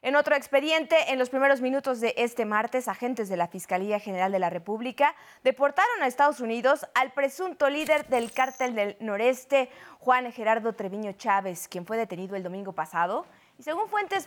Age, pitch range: 20-39, 210-280 Hz